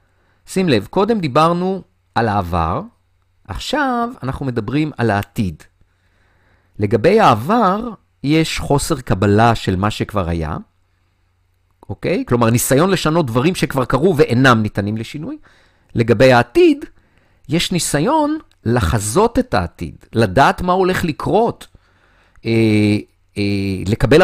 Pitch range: 95-150 Hz